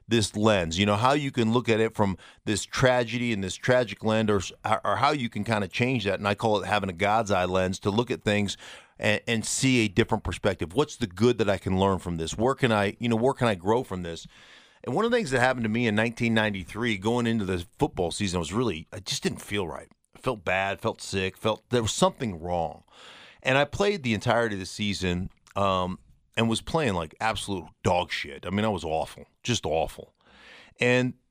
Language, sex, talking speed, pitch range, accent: English, male, 235 wpm, 95-120 Hz, American